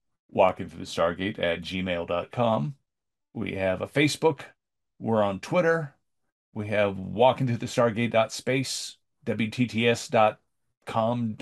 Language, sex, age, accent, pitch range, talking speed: English, male, 40-59, American, 100-130 Hz, 90 wpm